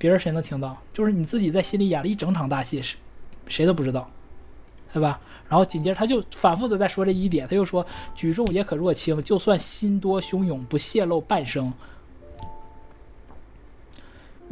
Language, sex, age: Chinese, male, 20-39